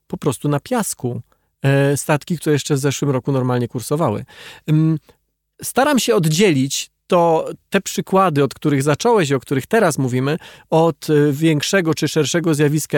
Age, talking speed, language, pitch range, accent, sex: 40-59, 145 wpm, Polish, 145-190 Hz, native, male